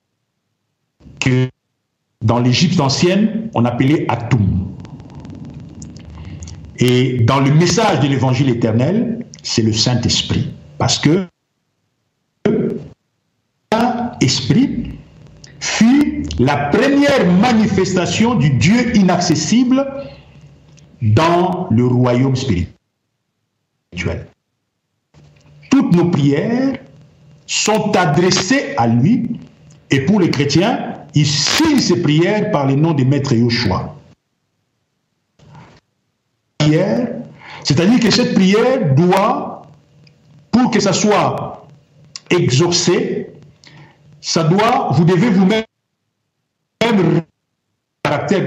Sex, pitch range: male, 135-190 Hz